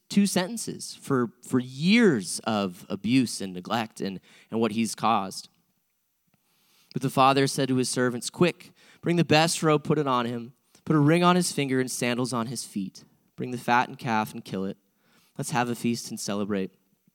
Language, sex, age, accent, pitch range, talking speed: English, male, 20-39, American, 95-145 Hz, 195 wpm